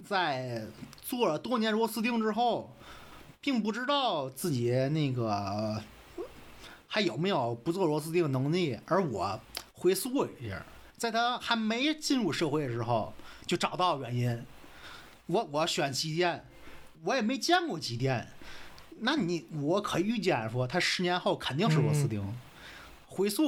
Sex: male